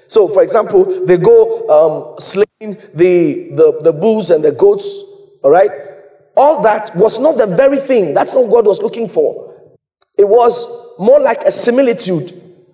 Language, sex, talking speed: English, male, 170 wpm